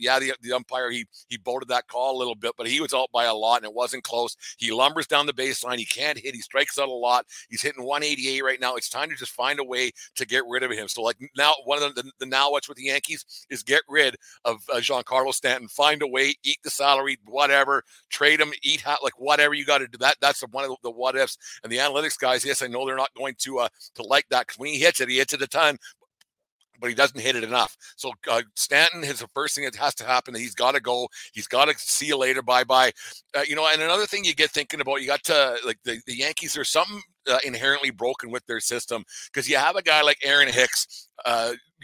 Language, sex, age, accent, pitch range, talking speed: English, male, 50-69, American, 120-140 Hz, 265 wpm